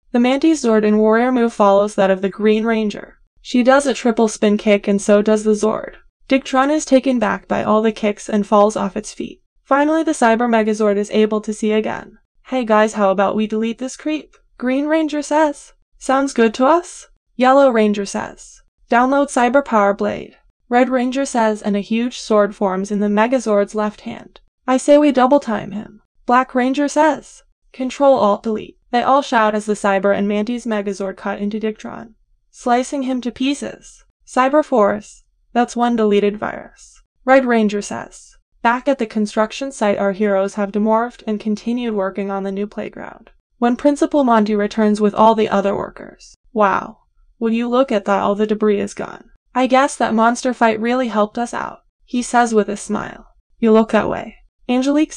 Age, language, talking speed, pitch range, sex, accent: 10-29, English, 185 wpm, 210-255 Hz, female, American